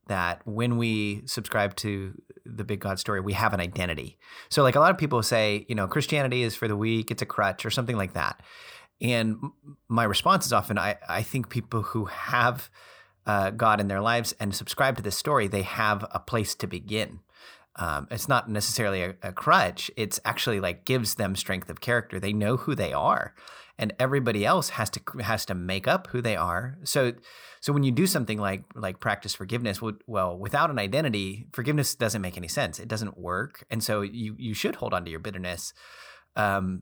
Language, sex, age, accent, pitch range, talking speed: English, male, 30-49, American, 100-125 Hz, 205 wpm